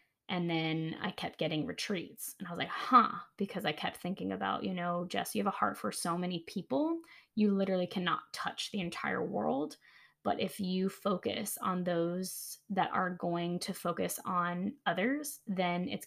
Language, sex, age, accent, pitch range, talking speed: English, female, 10-29, American, 175-200 Hz, 185 wpm